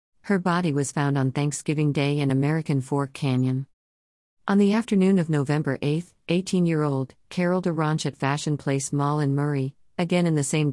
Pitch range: 130-165 Hz